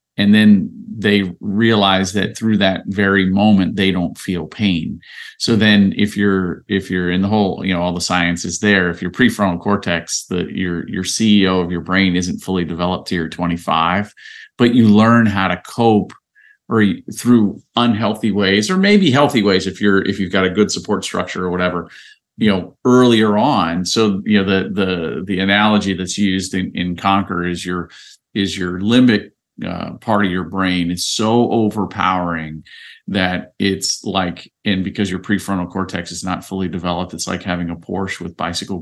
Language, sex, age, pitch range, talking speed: English, male, 40-59, 90-105 Hz, 185 wpm